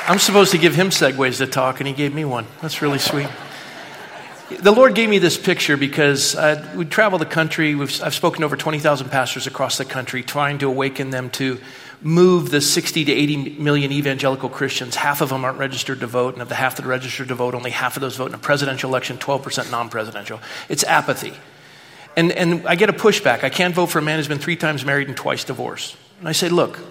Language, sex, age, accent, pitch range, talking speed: English, male, 40-59, American, 135-185 Hz, 230 wpm